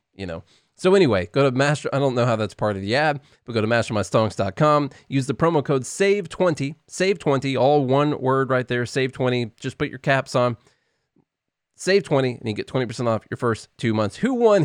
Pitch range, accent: 110-140 Hz, American